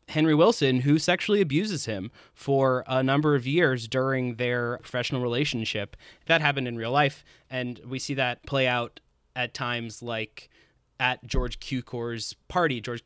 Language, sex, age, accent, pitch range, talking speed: English, male, 20-39, American, 120-145 Hz, 155 wpm